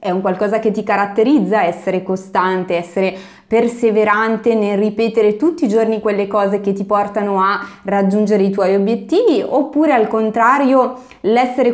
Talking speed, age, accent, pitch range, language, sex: 150 wpm, 20-39, native, 190-230 Hz, Italian, female